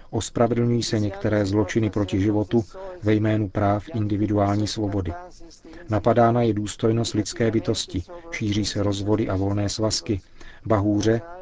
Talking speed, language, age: 120 wpm, Czech, 40-59